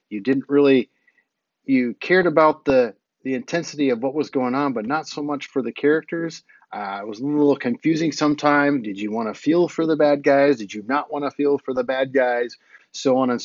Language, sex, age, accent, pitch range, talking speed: English, male, 30-49, American, 115-145 Hz, 225 wpm